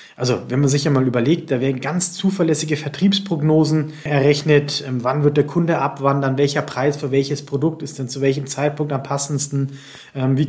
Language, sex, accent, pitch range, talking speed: German, male, German, 135-155 Hz, 175 wpm